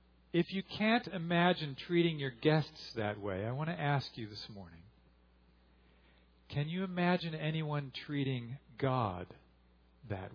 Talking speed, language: 135 wpm, English